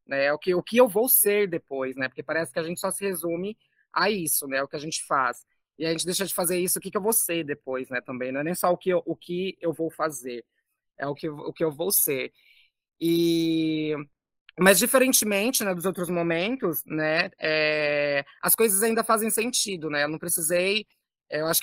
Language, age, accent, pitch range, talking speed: Portuguese, 20-39, Brazilian, 155-205 Hz, 210 wpm